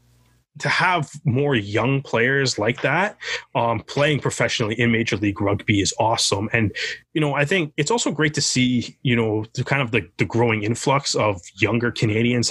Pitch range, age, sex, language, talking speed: 115-145 Hz, 20-39, male, English, 180 wpm